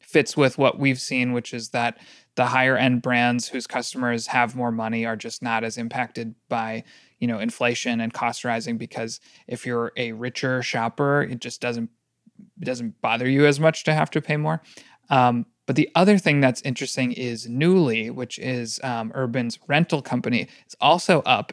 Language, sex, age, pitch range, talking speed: English, male, 30-49, 120-140 Hz, 185 wpm